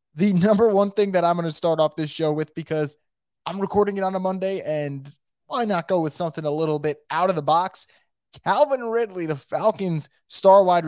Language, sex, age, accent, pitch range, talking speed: English, male, 20-39, American, 150-195 Hz, 210 wpm